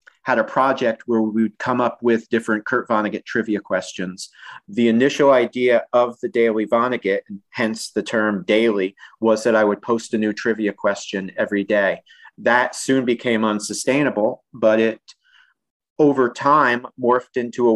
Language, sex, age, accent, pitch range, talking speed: English, male, 40-59, American, 110-125 Hz, 160 wpm